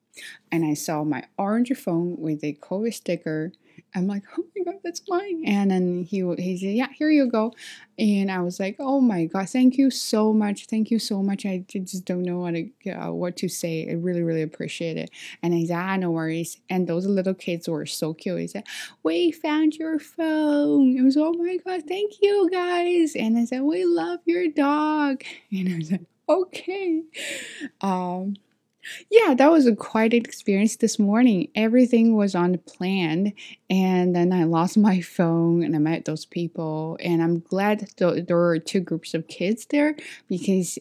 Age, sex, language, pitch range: 10-29, female, Chinese, 170-255 Hz